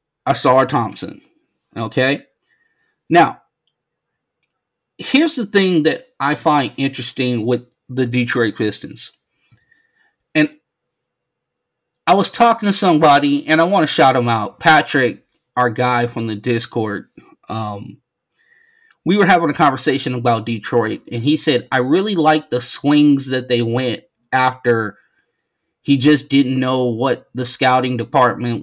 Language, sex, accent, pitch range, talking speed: English, male, American, 120-155 Hz, 135 wpm